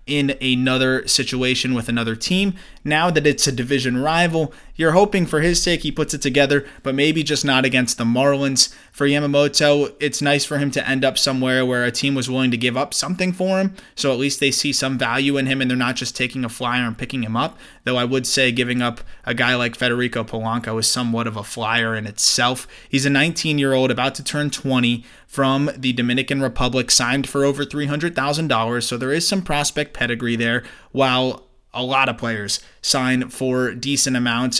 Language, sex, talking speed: English, male, 205 wpm